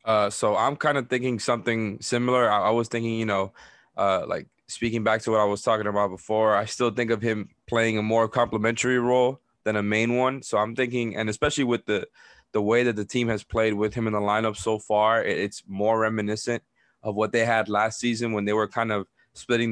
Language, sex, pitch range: English, male, 105-120 Hz